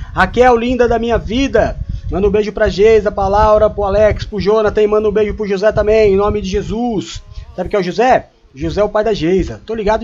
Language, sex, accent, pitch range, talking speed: Portuguese, male, Brazilian, 205-240 Hz, 240 wpm